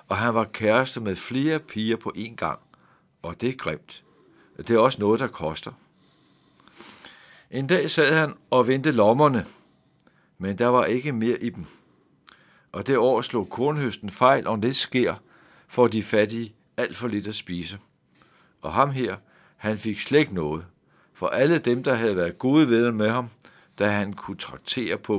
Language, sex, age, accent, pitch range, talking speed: Danish, male, 60-79, native, 105-130 Hz, 175 wpm